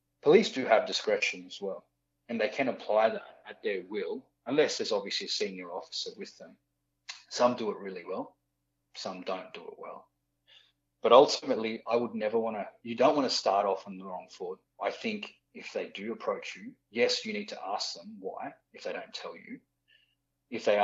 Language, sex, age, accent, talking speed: English, male, 30-49, Australian, 200 wpm